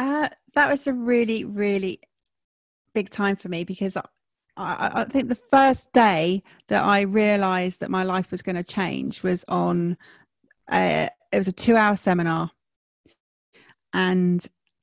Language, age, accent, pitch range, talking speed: English, 30-49, British, 170-200 Hz, 155 wpm